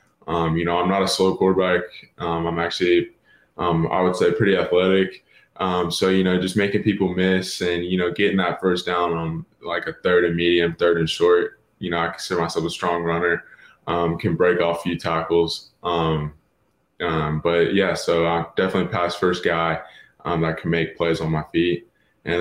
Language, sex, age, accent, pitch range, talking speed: English, male, 20-39, American, 80-95 Hz, 205 wpm